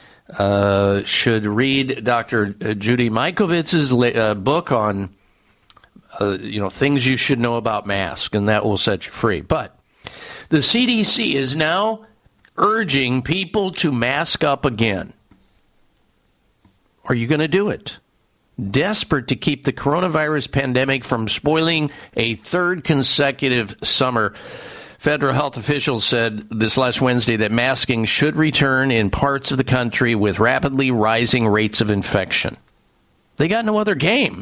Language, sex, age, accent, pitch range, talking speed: English, male, 50-69, American, 115-155 Hz, 140 wpm